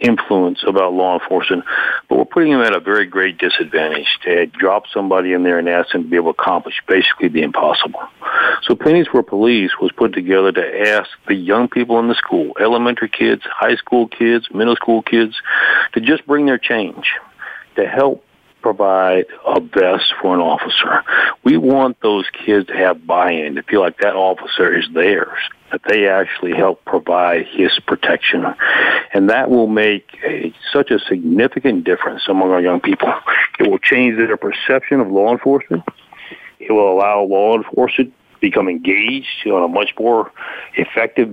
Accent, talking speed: American, 175 wpm